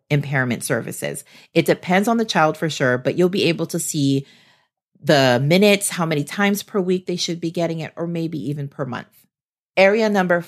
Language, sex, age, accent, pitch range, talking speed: English, female, 40-59, American, 140-180 Hz, 195 wpm